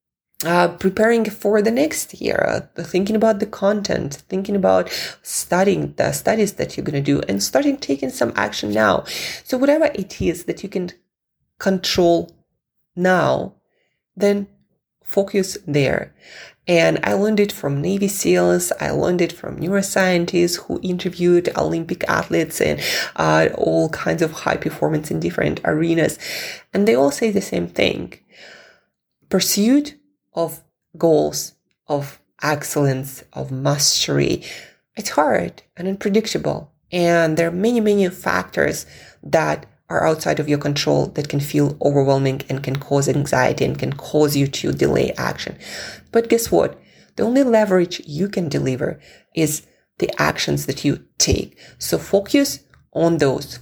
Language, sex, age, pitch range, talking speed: English, female, 20-39, 145-200 Hz, 145 wpm